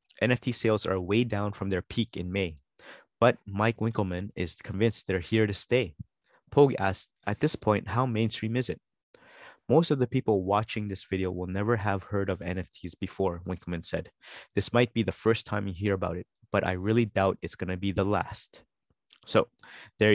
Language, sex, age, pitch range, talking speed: English, male, 20-39, 95-115 Hz, 195 wpm